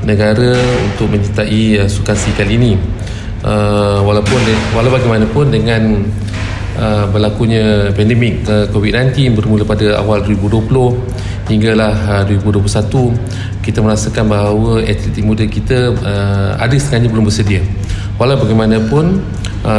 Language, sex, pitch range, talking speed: Malay, male, 100-115 Hz, 115 wpm